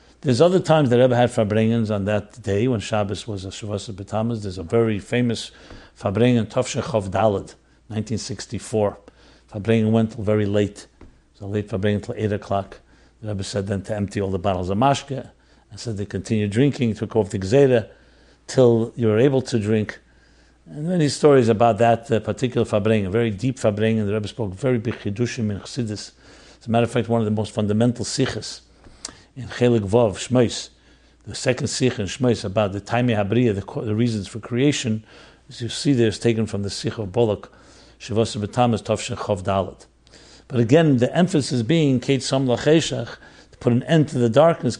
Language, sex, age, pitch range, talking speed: English, male, 60-79, 105-130 Hz, 190 wpm